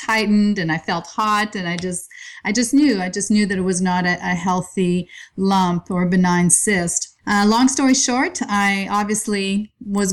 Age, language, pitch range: 30-49, English, 185-210 Hz